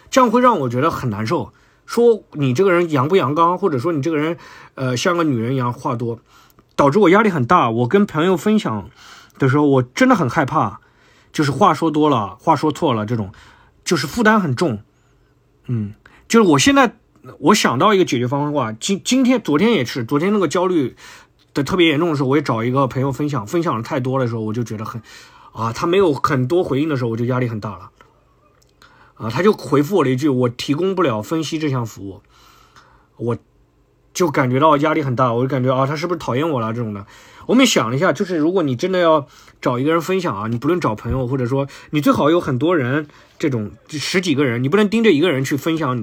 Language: Chinese